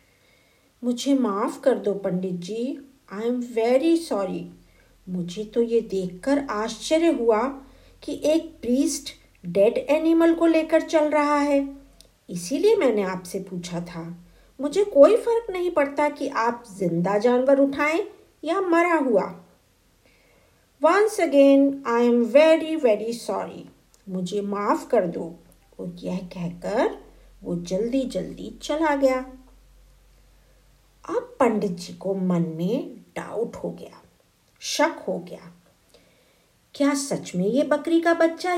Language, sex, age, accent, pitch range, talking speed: Hindi, female, 50-69, native, 195-315 Hz, 125 wpm